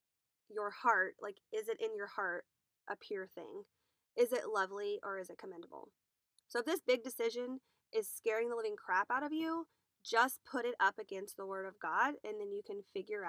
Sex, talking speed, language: female, 205 wpm, English